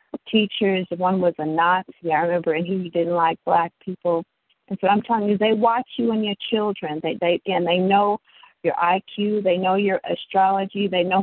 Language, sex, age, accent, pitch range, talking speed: English, female, 50-69, American, 175-210 Hz, 200 wpm